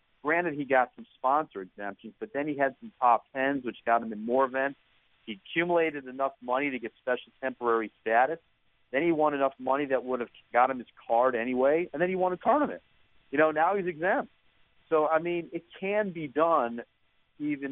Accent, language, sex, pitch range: American, English, male, 115-150 Hz